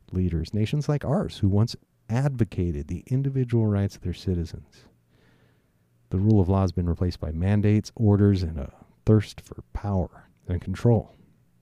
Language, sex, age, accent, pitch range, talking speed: English, male, 40-59, American, 85-110 Hz, 155 wpm